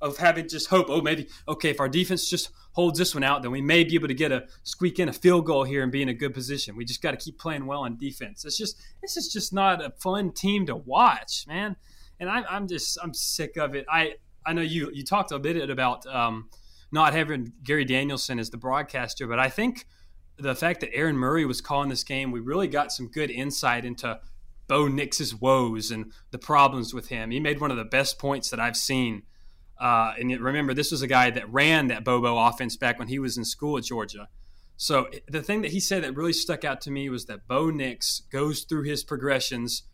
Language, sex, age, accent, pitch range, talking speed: English, male, 20-39, American, 125-160 Hz, 235 wpm